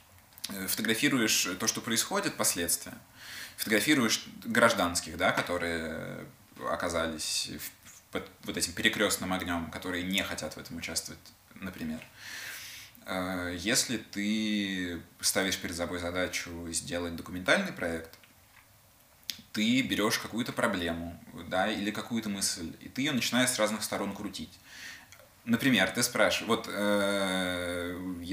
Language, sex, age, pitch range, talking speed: Russian, male, 20-39, 85-105 Hz, 100 wpm